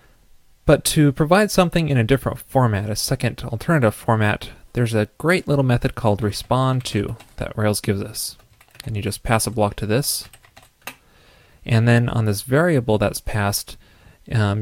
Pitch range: 105-120 Hz